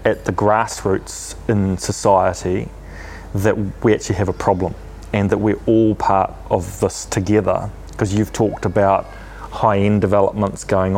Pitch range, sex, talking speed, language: 95-110 Hz, male, 140 wpm, English